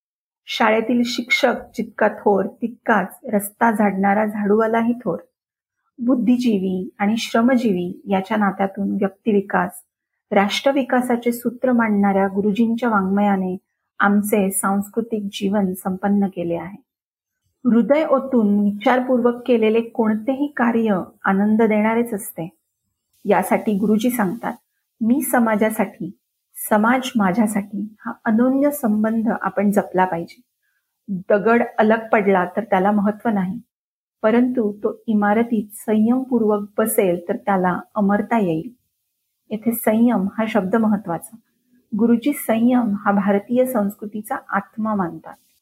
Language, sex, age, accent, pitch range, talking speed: Marathi, female, 40-59, native, 200-235 Hz, 90 wpm